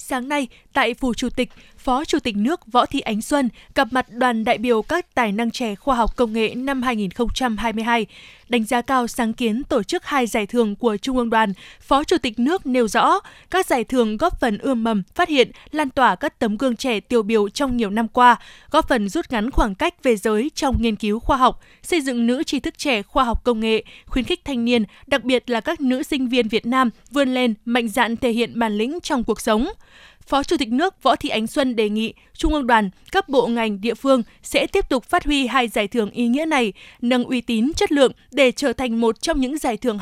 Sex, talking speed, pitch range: female, 240 wpm, 230-275 Hz